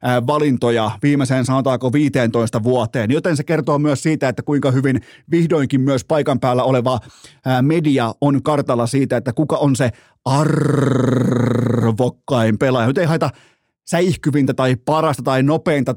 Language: Finnish